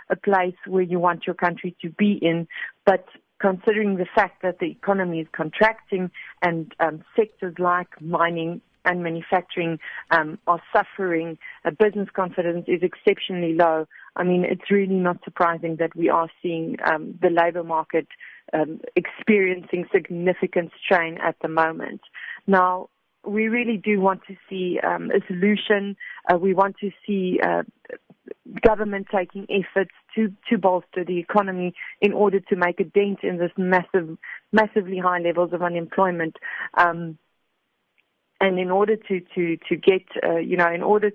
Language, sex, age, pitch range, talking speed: English, female, 40-59, 170-200 Hz, 155 wpm